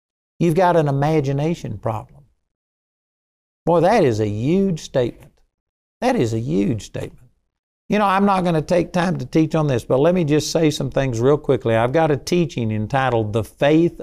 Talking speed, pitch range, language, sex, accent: 190 wpm, 115-155 Hz, English, male, American